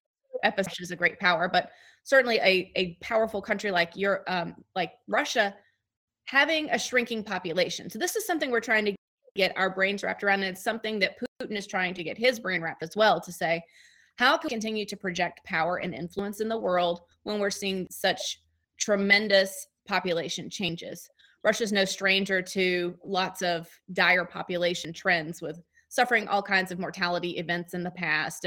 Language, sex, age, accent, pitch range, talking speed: English, female, 20-39, American, 180-215 Hz, 180 wpm